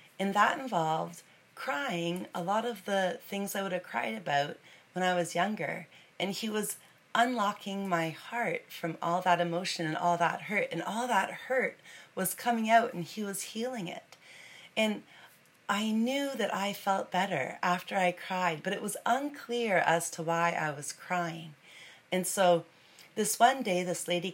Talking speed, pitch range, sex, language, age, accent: 175 wpm, 165-200 Hz, female, English, 30-49, American